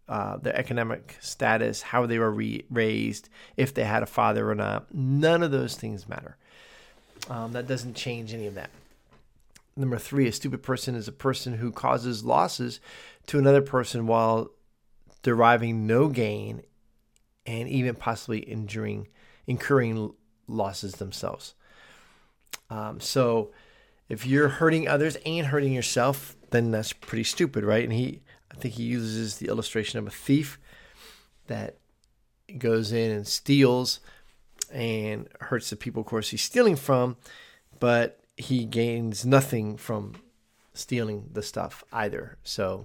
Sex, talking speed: male, 140 wpm